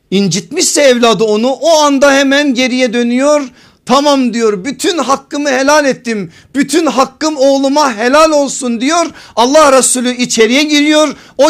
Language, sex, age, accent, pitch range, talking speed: Turkish, male, 50-69, native, 185-270 Hz, 130 wpm